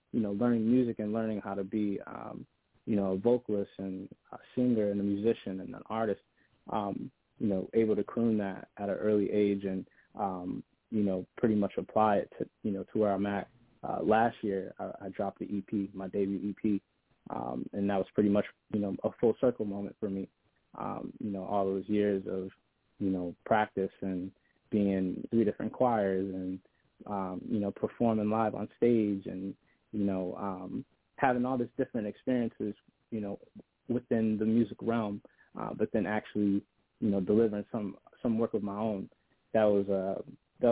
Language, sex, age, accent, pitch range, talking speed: English, male, 20-39, American, 100-110 Hz, 190 wpm